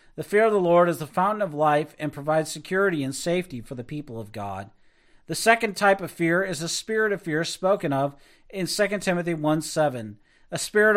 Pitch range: 155-195 Hz